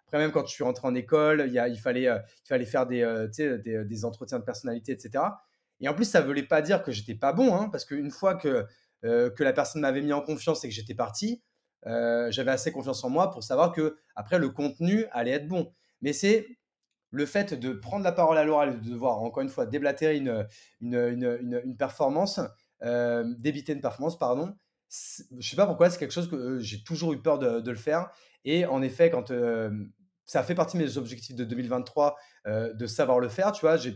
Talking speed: 235 wpm